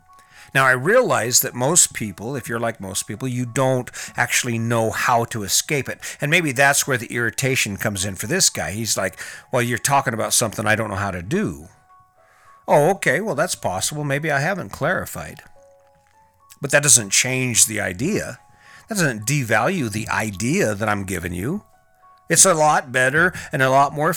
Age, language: 50-69, English